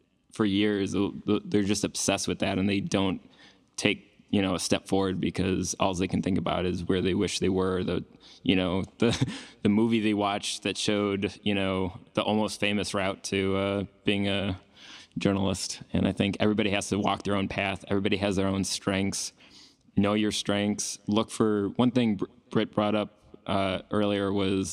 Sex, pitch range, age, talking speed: male, 95-100 Hz, 20-39, 185 wpm